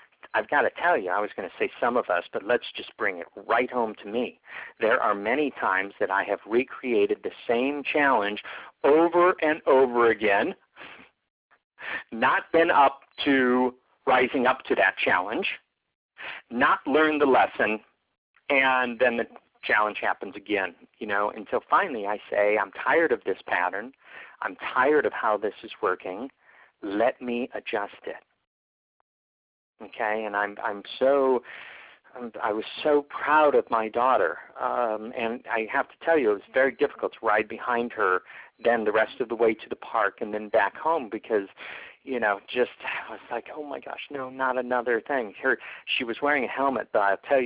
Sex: male